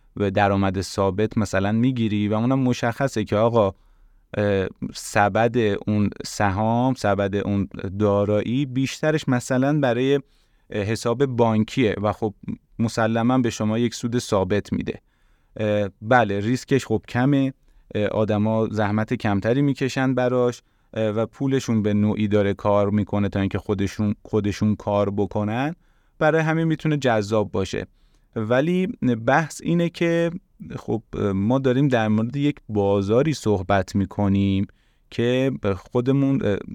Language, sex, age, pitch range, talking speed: Persian, male, 30-49, 100-125 Hz, 120 wpm